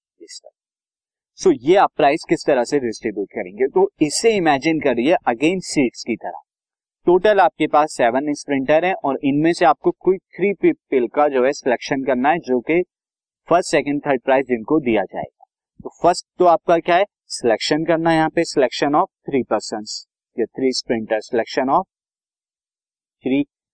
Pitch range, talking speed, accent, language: 130-175 Hz, 155 wpm, native, Hindi